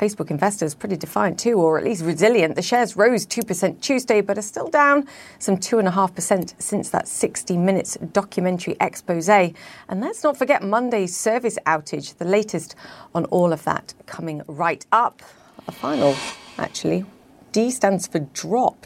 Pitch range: 170-215 Hz